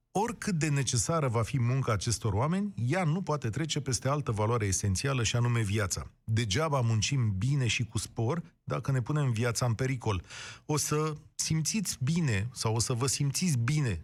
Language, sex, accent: Romanian, male, native